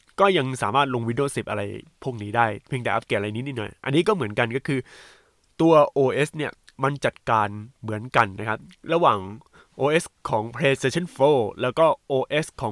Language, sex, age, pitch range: Thai, male, 20-39, 115-160 Hz